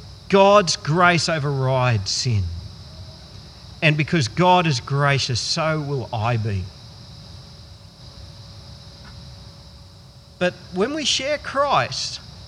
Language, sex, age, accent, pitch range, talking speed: English, male, 40-59, Australian, 120-180 Hz, 85 wpm